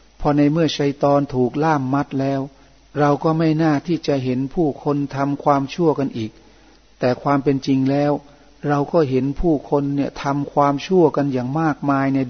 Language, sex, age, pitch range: Thai, male, 60-79, 130-145 Hz